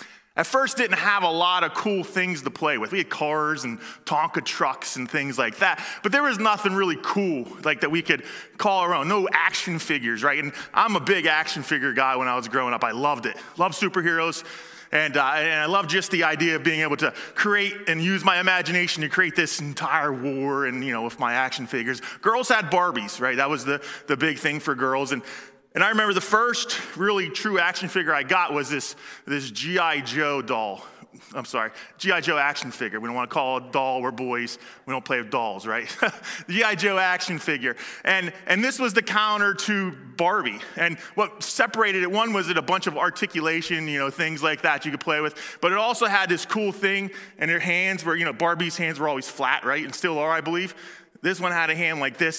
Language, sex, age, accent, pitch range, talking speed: English, male, 20-39, American, 140-190 Hz, 230 wpm